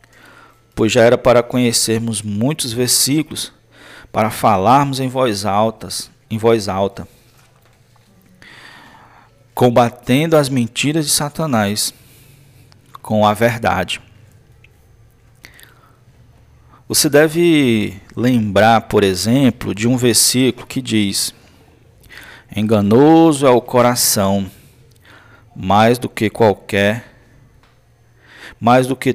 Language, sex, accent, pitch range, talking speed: Portuguese, male, Brazilian, 110-125 Hz, 85 wpm